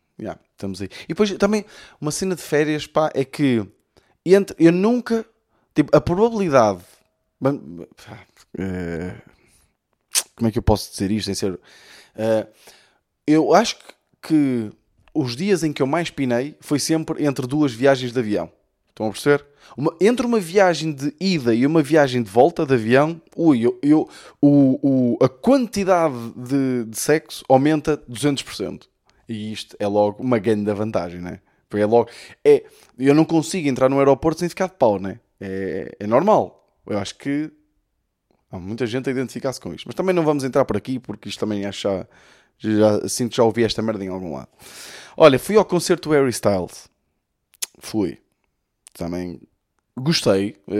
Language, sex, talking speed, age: Portuguese, male, 170 wpm, 20-39